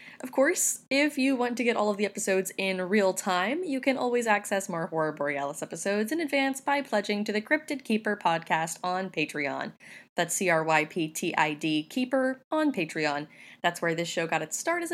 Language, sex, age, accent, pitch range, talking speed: English, female, 10-29, American, 170-240 Hz, 185 wpm